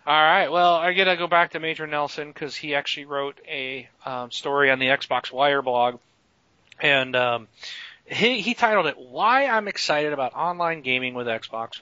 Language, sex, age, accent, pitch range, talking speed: English, male, 40-59, American, 125-150 Hz, 180 wpm